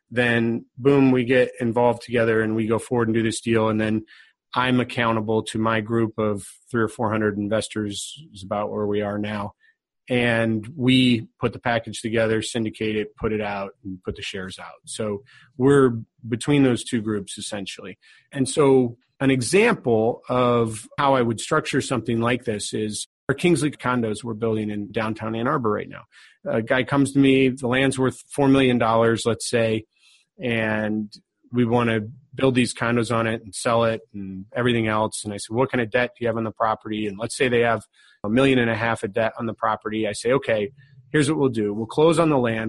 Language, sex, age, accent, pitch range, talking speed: English, male, 40-59, American, 110-130 Hz, 205 wpm